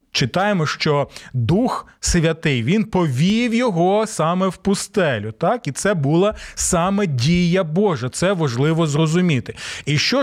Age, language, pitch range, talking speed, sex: 30-49, Ukrainian, 140-190 Hz, 130 wpm, male